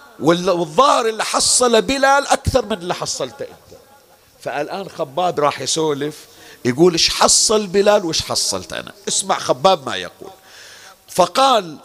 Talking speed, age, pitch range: 125 wpm, 50-69, 165-240 Hz